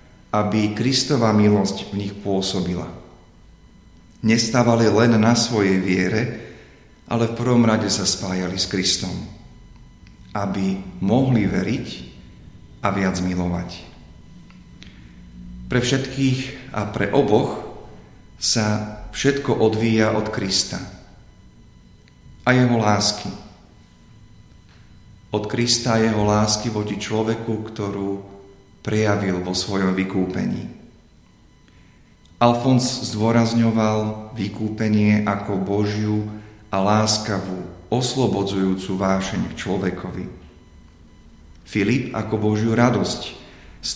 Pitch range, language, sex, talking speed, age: 95-115 Hz, Slovak, male, 90 wpm, 40-59